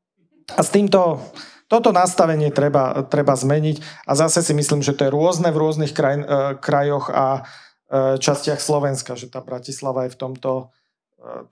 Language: Slovak